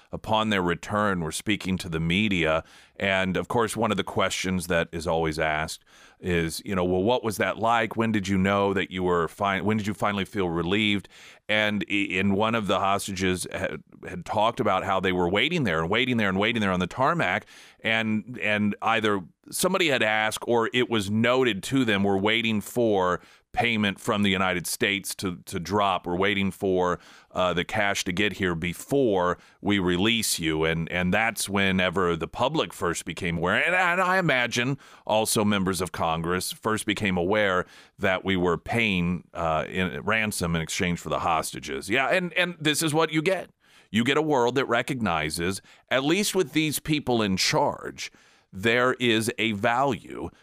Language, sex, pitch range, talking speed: English, male, 90-110 Hz, 190 wpm